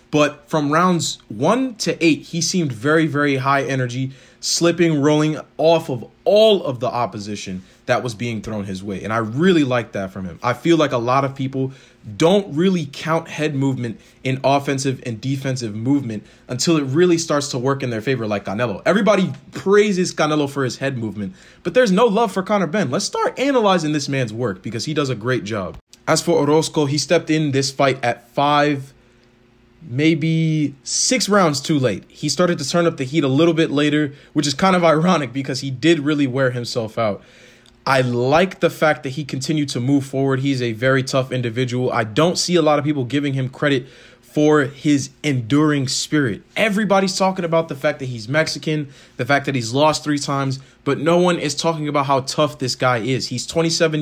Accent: American